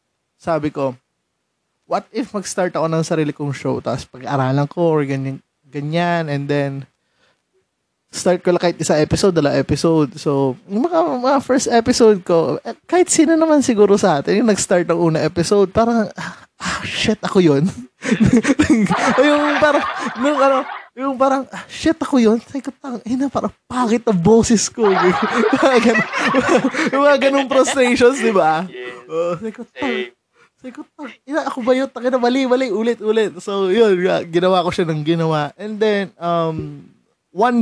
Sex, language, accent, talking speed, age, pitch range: male, Filipino, native, 145 wpm, 20-39, 155-230 Hz